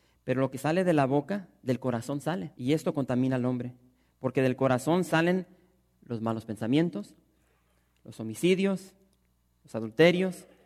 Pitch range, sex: 120-175 Hz, male